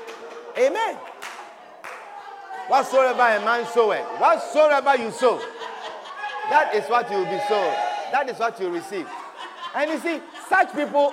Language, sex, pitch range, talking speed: English, male, 215-350 Hz, 130 wpm